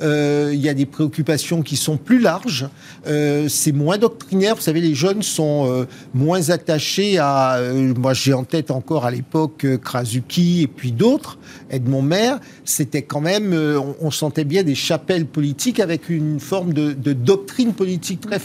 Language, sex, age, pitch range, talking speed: French, male, 50-69, 140-180 Hz, 185 wpm